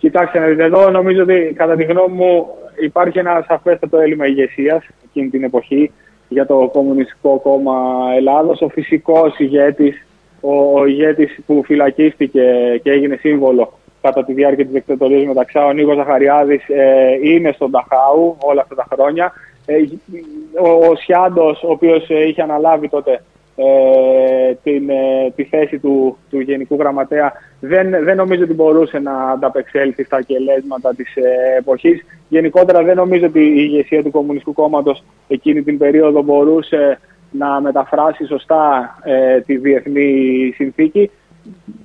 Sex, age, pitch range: male, 20-39, 135-160 Hz